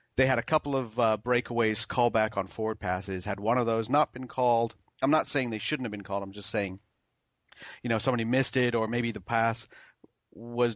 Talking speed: 220 wpm